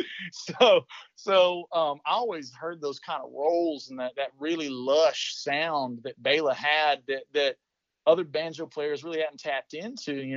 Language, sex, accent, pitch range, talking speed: English, male, American, 125-160 Hz, 170 wpm